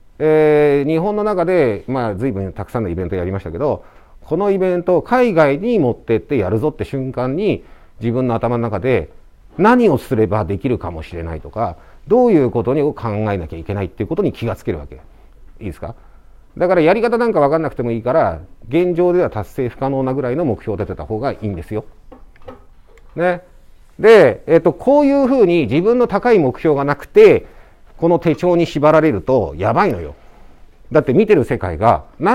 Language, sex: Japanese, male